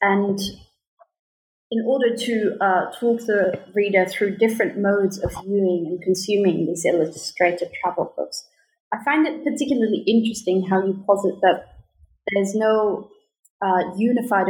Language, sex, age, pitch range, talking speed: English, female, 30-49, 185-235 Hz, 135 wpm